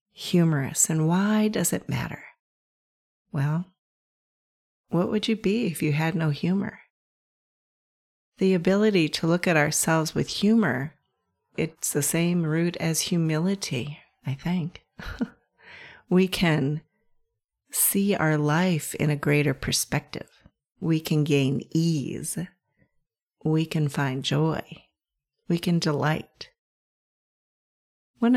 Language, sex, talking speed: English, female, 110 wpm